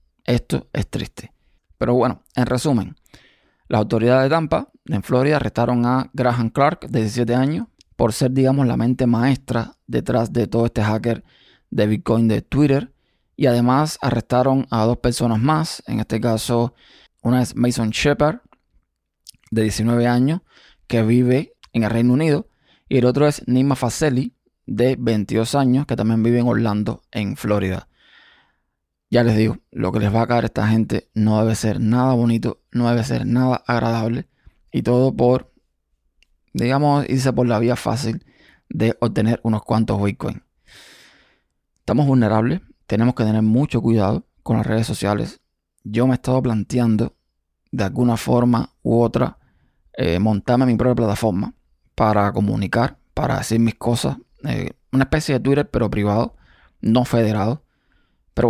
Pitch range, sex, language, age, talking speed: 110-125 Hz, male, Spanish, 20-39, 155 wpm